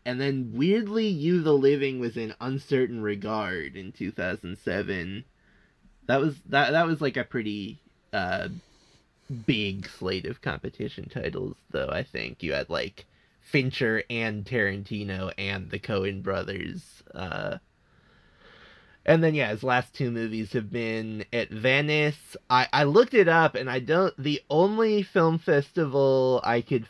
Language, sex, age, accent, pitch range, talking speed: English, male, 20-39, American, 110-140 Hz, 145 wpm